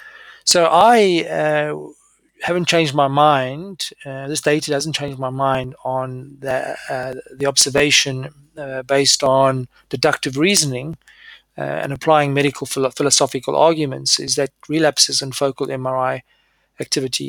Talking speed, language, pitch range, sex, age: 125 wpm, English, 130-150 Hz, male, 30-49